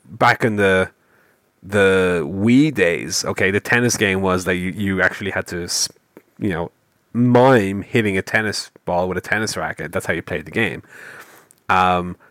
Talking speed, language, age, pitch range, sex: 170 wpm, English, 30-49, 95-120 Hz, male